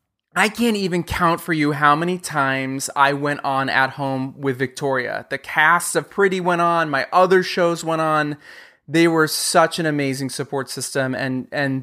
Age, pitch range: 30-49, 140-180 Hz